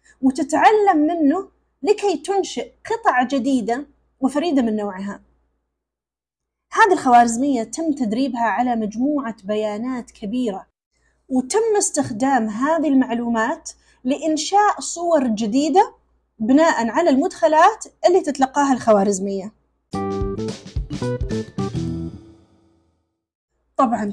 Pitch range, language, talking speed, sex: 215-320 Hz, Arabic, 75 wpm, female